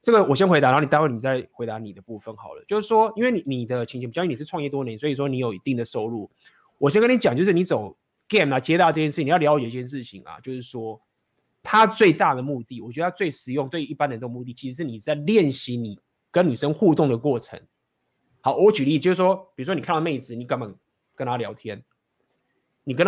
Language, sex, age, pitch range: Chinese, male, 20-39, 125-175 Hz